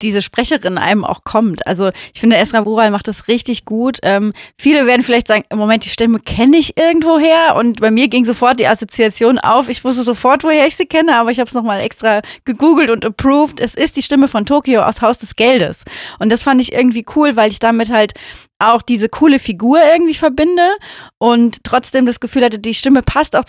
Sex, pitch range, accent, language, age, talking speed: female, 215-255 Hz, German, German, 30-49, 215 wpm